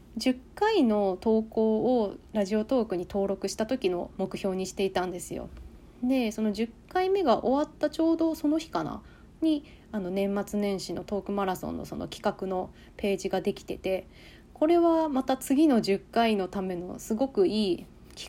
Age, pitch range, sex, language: 20-39, 185-230 Hz, female, Japanese